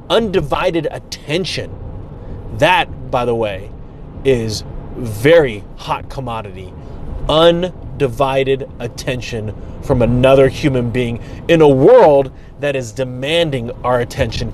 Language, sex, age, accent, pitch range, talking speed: English, male, 30-49, American, 120-145 Hz, 100 wpm